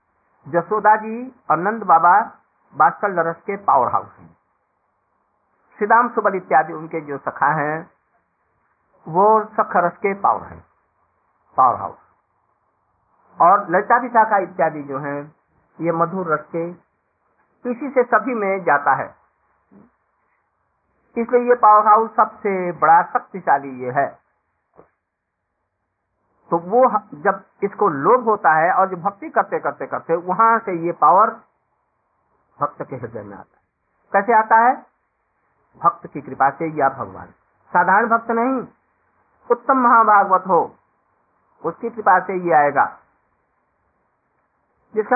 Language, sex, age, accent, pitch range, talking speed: Hindi, male, 50-69, native, 165-245 Hz, 125 wpm